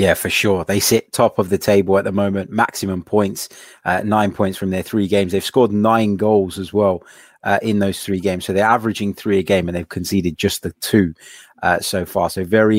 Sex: male